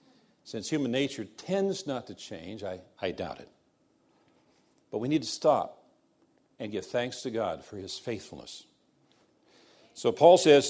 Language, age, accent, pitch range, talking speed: English, 50-69, American, 125-155 Hz, 150 wpm